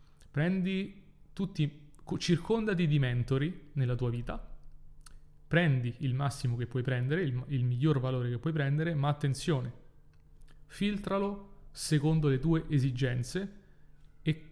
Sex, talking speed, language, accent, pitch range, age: male, 120 wpm, Italian, native, 130-155 Hz, 30-49